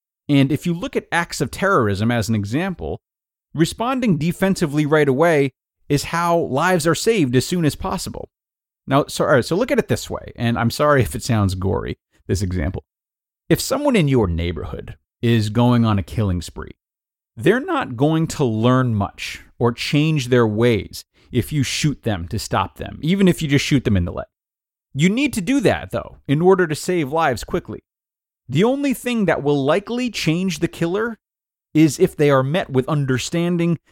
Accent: American